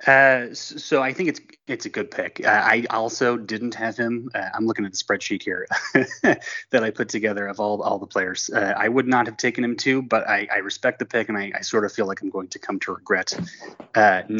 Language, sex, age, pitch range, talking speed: English, male, 20-39, 110-140 Hz, 245 wpm